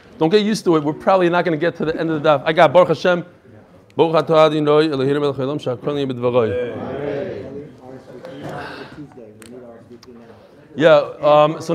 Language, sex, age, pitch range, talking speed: English, male, 30-49, 125-175 Hz, 115 wpm